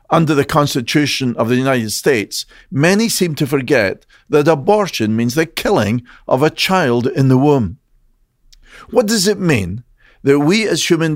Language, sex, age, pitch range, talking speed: English, male, 50-69, 125-175 Hz, 160 wpm